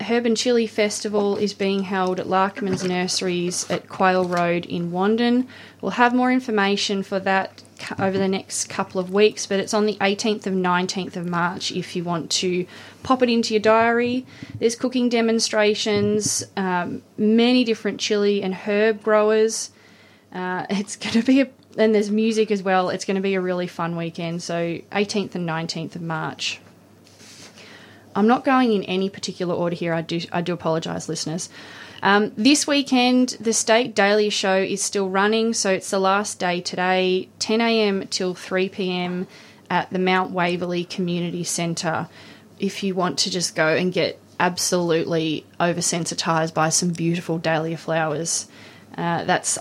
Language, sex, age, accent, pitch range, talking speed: English, female, 20-39, Australian, 175-215 Hz, 165 wpm